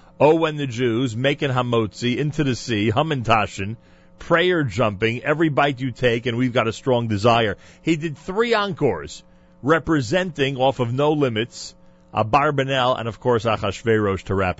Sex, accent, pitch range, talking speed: male, American, 100-135 Hz, 160 wpm